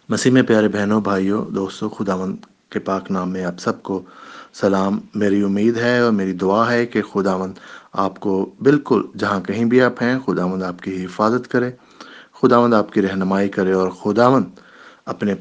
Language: English